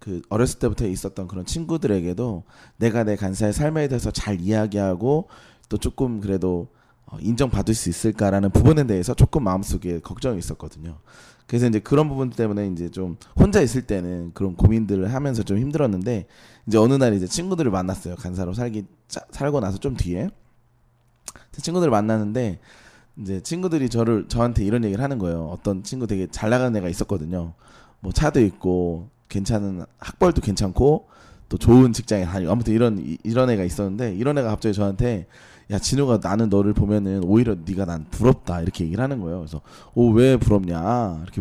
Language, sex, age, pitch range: Korean, male, 20-39, 95-120 Hz